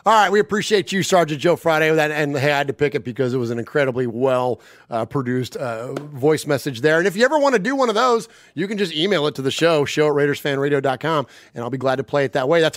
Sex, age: male, 30-49